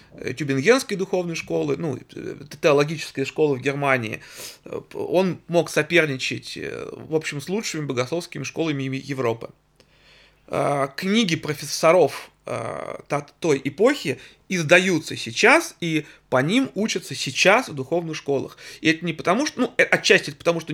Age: 30-49